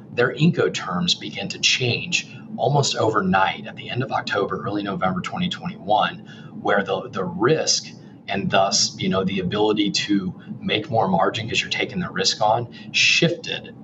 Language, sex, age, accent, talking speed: English, male, 30-49, American, 160 wpm